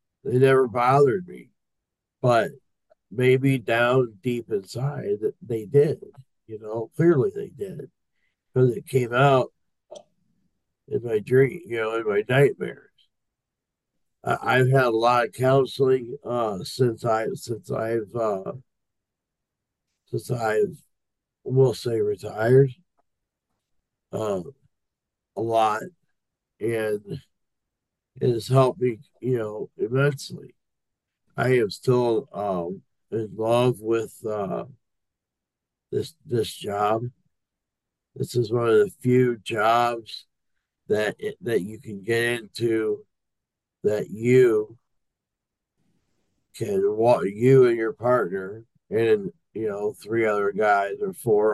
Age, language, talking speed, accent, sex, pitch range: 50-69, English, 115 wpm, American, male, 115-135 Hz